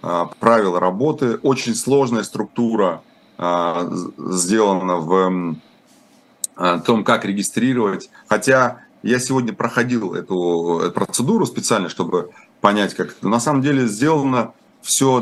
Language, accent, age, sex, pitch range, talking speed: Russian, native, 30-49, male, 95-130 Hz, 105 wpm